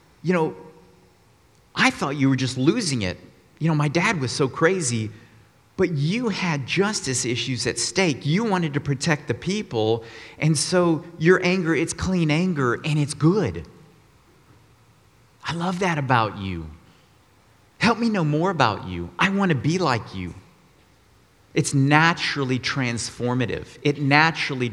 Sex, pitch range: male, 105-145 Hz